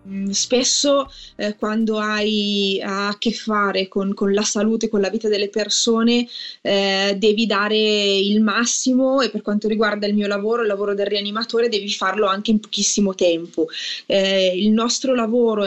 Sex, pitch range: female, 195-225 Hz